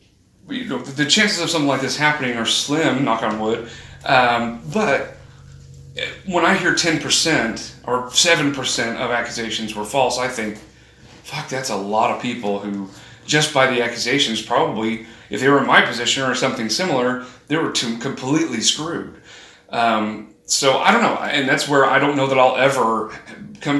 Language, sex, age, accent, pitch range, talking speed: English, male, 30-49, American, 110-130 Hz, 165 wpm